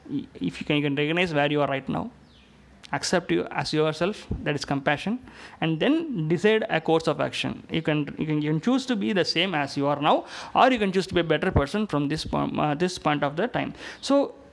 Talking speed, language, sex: 250 wpm, Tamil, male